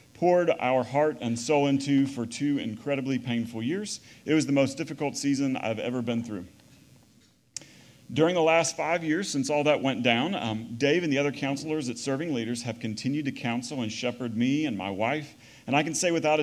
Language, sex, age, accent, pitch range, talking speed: English, male, 40-59, American, 125-160 Hz, 200 wpm